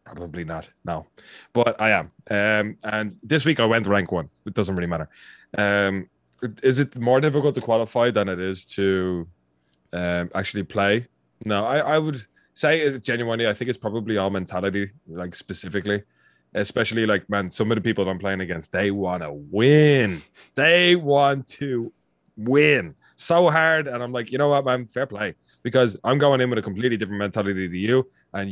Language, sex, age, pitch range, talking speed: English, male, 20-39, 95-125 Hz, 185 wpm